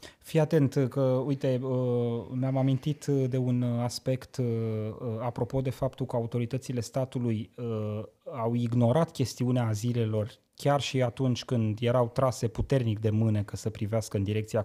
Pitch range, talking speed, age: 110-140 Hz, 135 wpm, 20-39